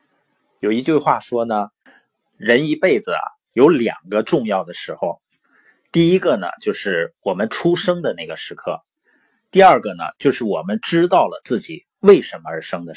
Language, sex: Chinese, male